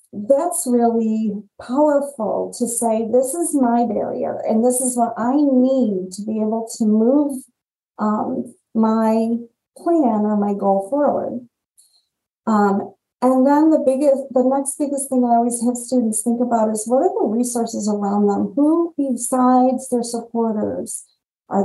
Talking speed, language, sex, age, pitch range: 150 wpm, English, female, 40-59, 210-260 Hz